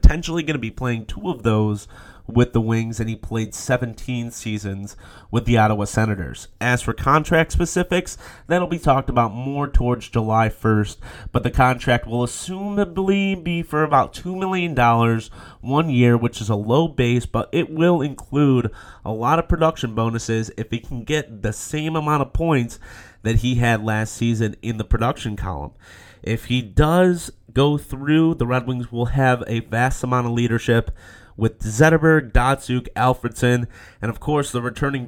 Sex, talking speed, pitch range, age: male, 175 wpm, 110-135 Hz, 30-49